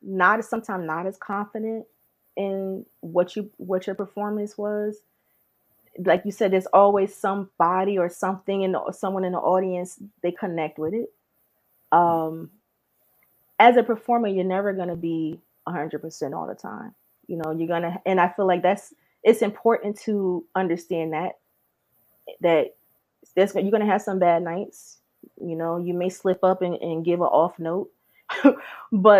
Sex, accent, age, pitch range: female, American, 20-39, 175-210 Hz